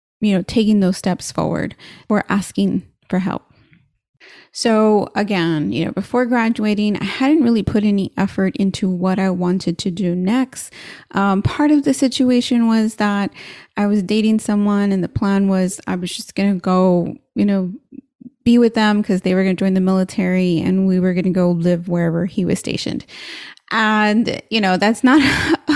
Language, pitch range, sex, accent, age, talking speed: English, 185-235 Hz, female, American, 30-49, 175 wpm